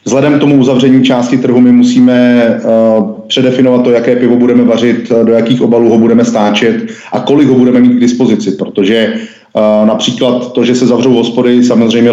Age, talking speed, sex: 30-49, 175 wpm, male